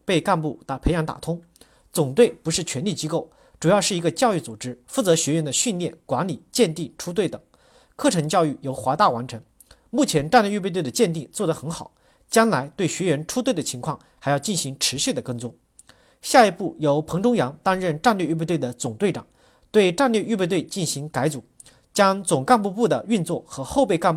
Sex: male